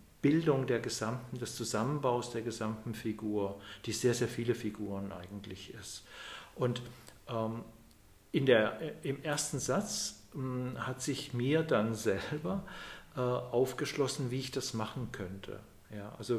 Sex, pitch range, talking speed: male, 115-130 Hz, 130 wpm